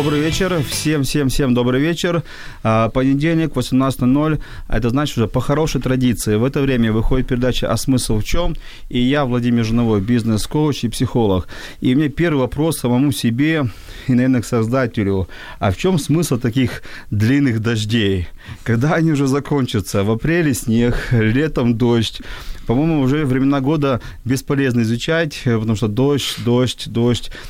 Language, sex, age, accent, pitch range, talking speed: Ukrainian, male, 30-49, native, 110-135 Hz, 150 wpm